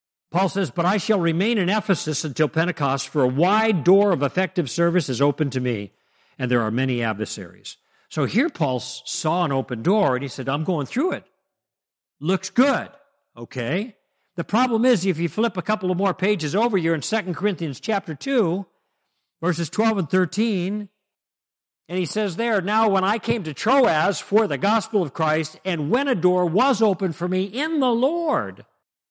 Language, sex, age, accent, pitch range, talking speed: English, male, 60-79, American, 150-215 Hz, 190 wpm